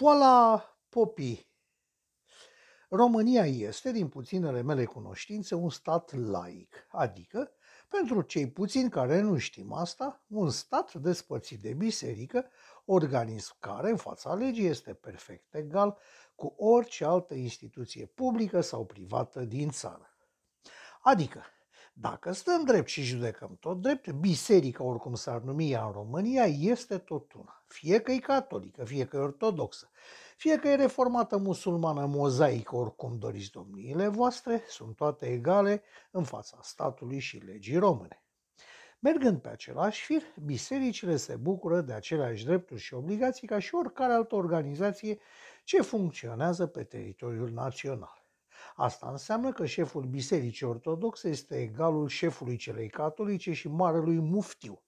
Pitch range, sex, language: 130-220 Hz, male, Romanian